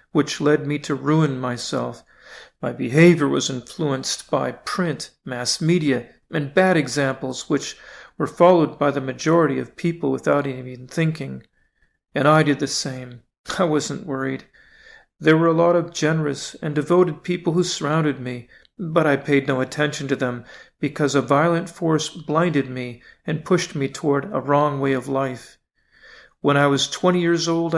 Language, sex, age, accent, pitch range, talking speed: English, male, 40-59, American, 135-165 Hz, 165 wpm